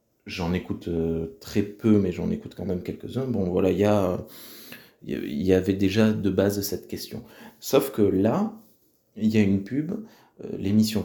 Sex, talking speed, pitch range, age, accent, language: male, 165 wpm, 85-110 Hz, 30-49, French, French